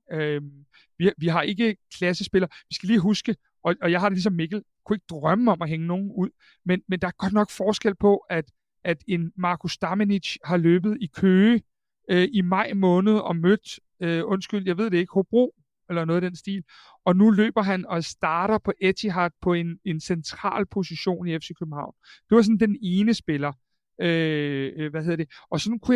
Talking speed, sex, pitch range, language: 205 wpm, male, 170-210 Hz, Danish